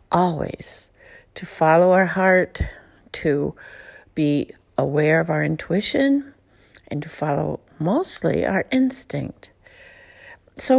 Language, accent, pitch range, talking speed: English, American, 170-215 Hz, 100 wpm